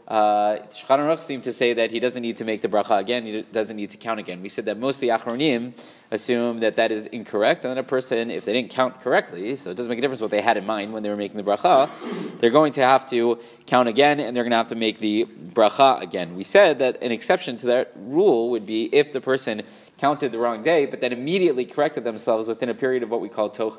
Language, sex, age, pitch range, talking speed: English, male, 20-39, 115-140 Hz, 265 wpm